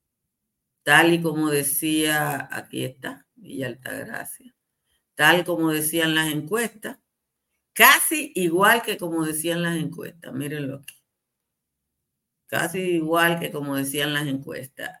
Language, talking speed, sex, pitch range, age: Spanish, 115 wpm, female, 135-165 Hz, 50-69